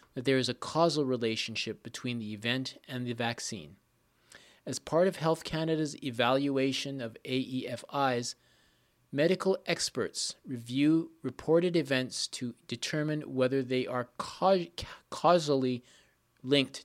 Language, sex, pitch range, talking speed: English, male, 125-155 Hz, 115 wpm